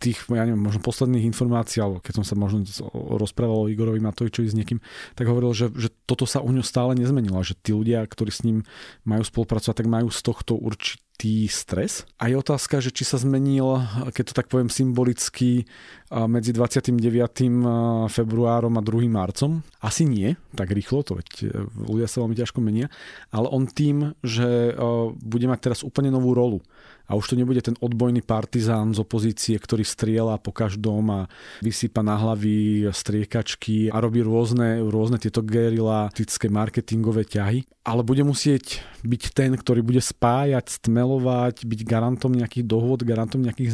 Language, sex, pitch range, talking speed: Slovak, male, 110-125 Hz, 165 wpm